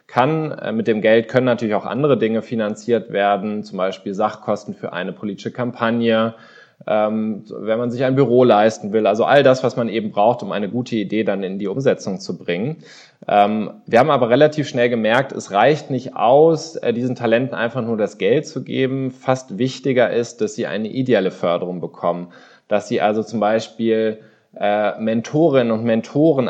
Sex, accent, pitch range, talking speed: male, German, 110-125 Hz, 175 wpm